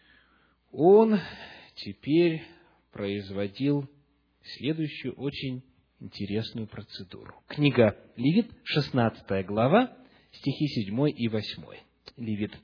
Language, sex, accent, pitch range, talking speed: Russian, male, native, 105-165 Hz, 75 wpm